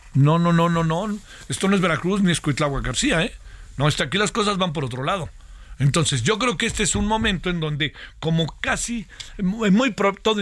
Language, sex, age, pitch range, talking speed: Spanish, male, 50-69, 145-185 Hz, 220 wpm